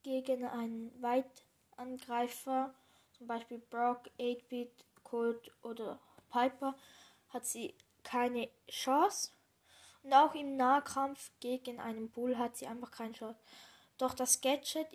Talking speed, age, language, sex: 115 wpm, 10-29, German, female